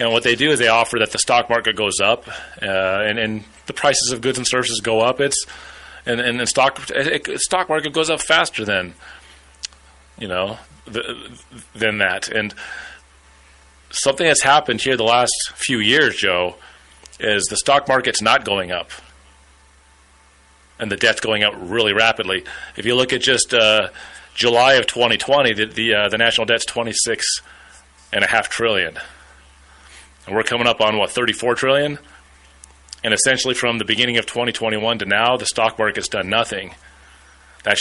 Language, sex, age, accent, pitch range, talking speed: English, male, 30-49, American, 80-130 Hz, 175 wpm